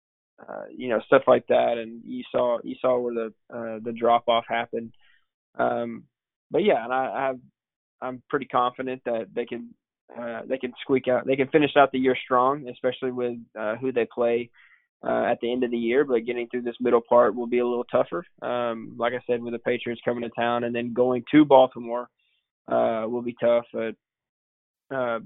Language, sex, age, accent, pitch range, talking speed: English, male, 20-39, American, 115-125 Hz, 205 wpm